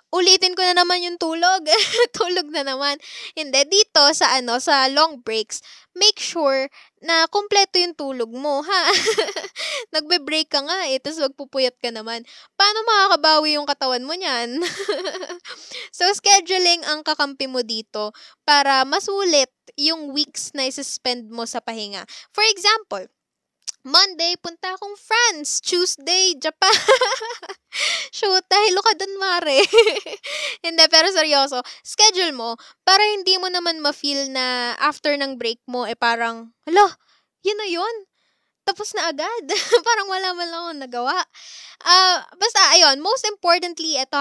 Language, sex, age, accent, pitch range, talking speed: Filipino, female, 20-39, native, 265-370 Hz, 140 wpm